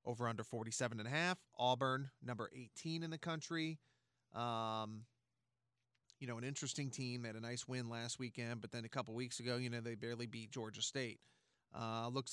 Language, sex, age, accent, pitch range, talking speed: English, male, 30-49, American, 120-140 Hz, 190 wpm